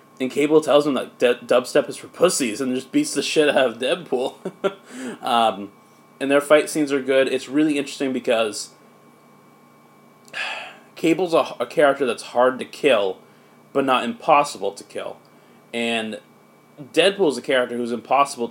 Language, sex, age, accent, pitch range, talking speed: English, male, 20-39, American, 115-145 Hz, 150 wpm